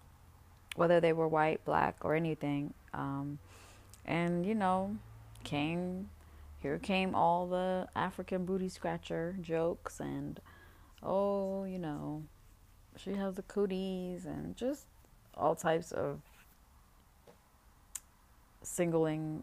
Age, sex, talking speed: 30-49, female, 105 wpm